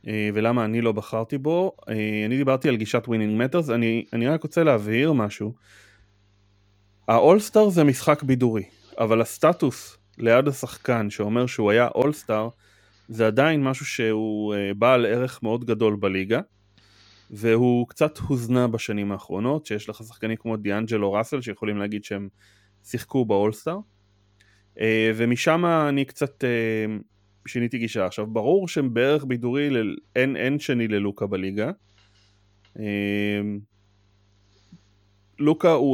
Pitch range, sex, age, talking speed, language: 100-130 Hz, male, 20-39, 115 wpm, Hebrew